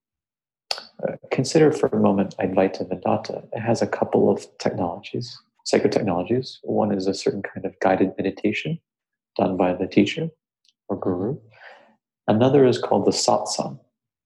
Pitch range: 100-115 Hz